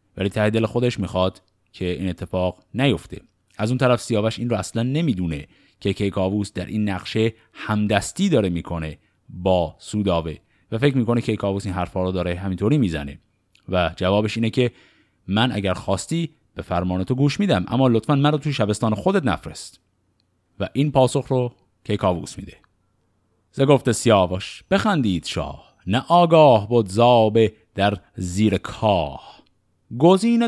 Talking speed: 130 wpm